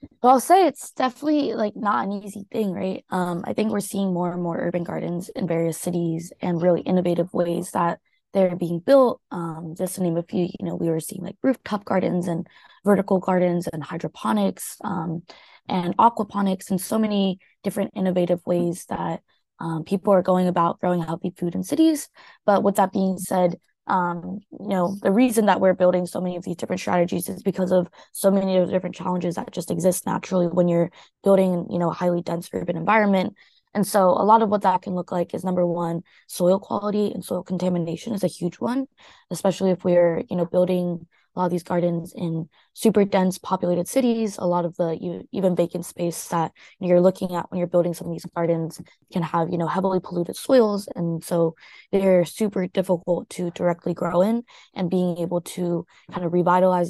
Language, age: English, 20-39